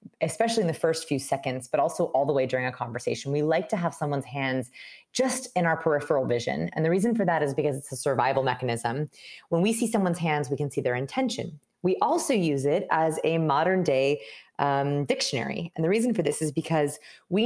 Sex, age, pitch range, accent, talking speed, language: female, 30-49, 140-185 Hz, American, 220 wpm, English